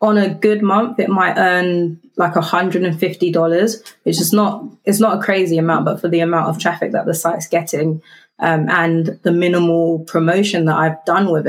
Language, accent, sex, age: English, British, female, 20-39